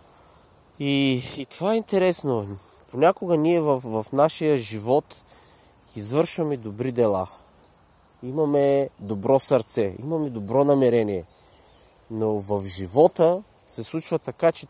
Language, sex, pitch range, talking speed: Bulgarian, male, 120-160 Hz, 110 wpm